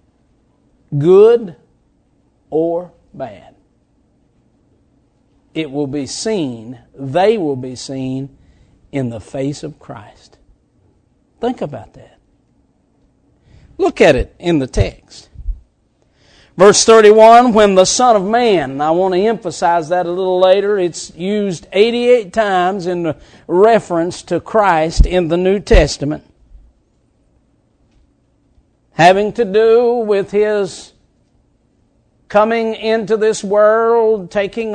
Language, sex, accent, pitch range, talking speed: English, male, American, 165-215 Hz, 110 wpm